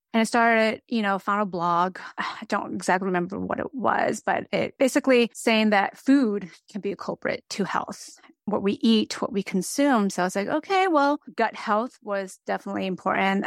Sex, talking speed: female, 195 wpm